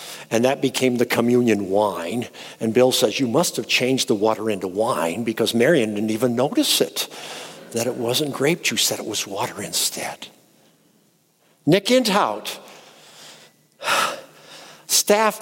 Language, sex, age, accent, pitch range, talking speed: English, male, 50-69, American, 125-210 Hz, 140 wpm